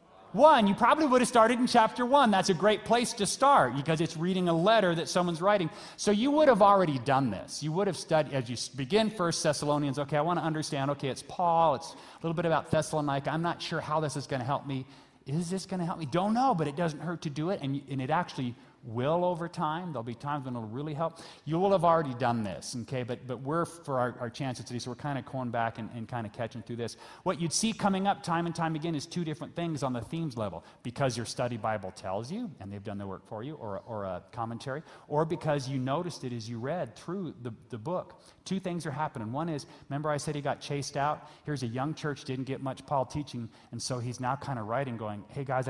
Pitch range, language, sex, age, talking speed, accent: 125-170 Hz, English, male, 30-49, 260 wpm, American